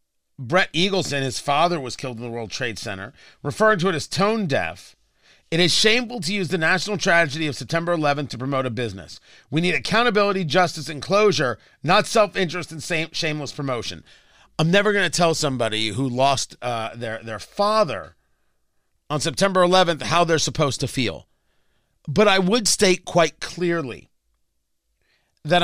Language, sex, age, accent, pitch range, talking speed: English, male, 40-59, American, 135-210 Hz, 165 wpm